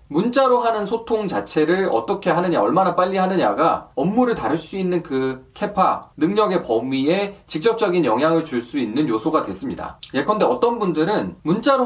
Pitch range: 160-230 Hz